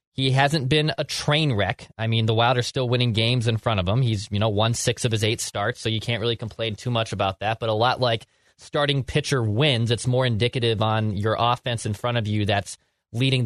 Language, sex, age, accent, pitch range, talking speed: English, male, 20-39, American, 110-130 Hz, 240 wpm